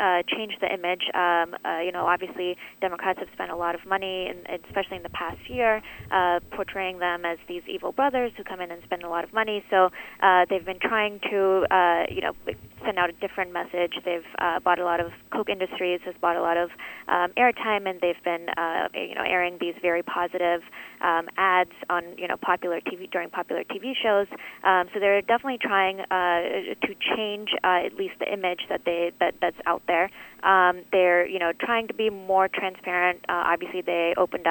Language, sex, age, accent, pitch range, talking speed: English, female, 20-39, American, 175-195 Hz, 210 wpm